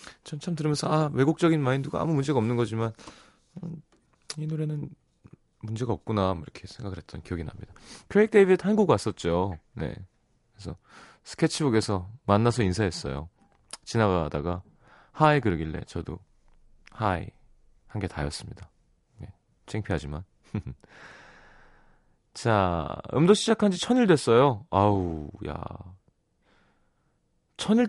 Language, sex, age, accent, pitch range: Korean, male, 30-49, native, 90-135 Hz